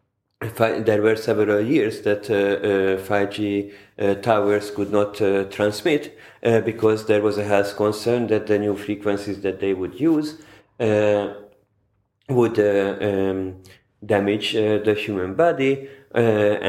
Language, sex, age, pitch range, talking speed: German, male, 40-59, 100-115 Hz, 140 wpm